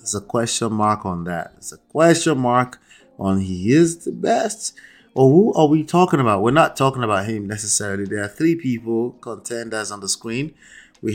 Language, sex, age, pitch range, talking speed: English, male, 30-49, 100-120 Hz, 195 wpm